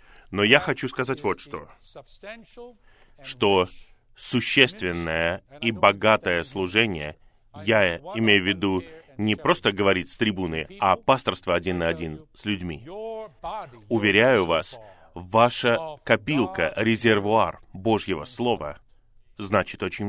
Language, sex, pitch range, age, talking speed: Russian, male, 95-125 Hz, 30-49, 110 wpm